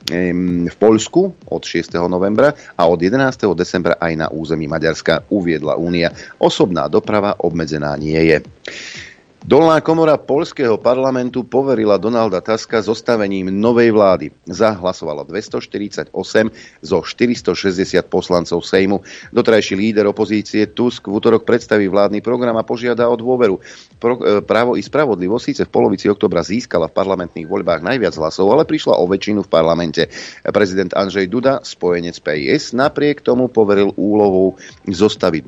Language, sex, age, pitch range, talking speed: Slovak, male, 40-59, 85-110 Hz, 130 wpm